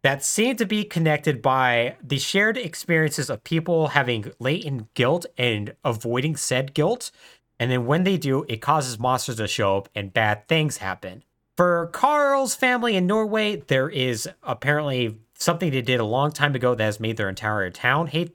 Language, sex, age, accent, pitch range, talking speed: English, male, 30-49, American, 120-175 Hz, 180 wpm